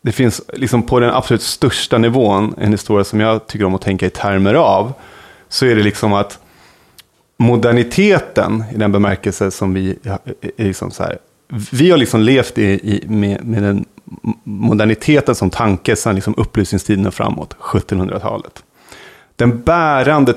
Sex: male